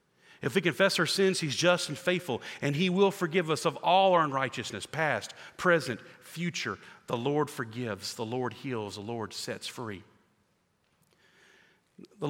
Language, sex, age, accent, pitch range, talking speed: English, male, 40-59, American, 120-165 Hz, 155 wpm